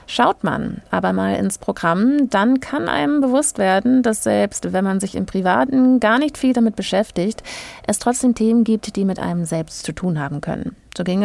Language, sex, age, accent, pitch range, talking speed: German, female, 30-49, German, 180-245 Hz, 195 wpm